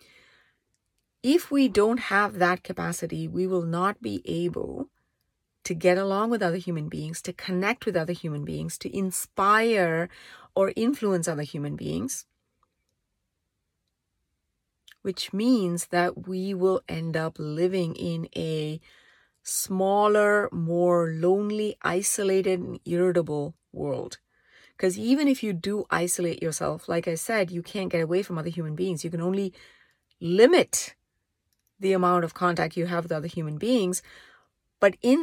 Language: English